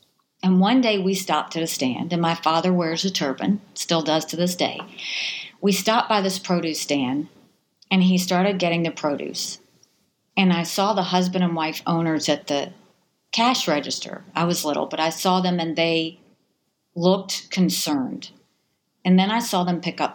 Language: English